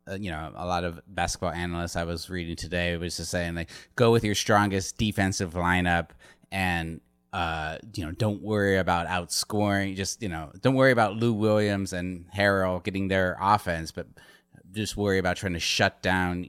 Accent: American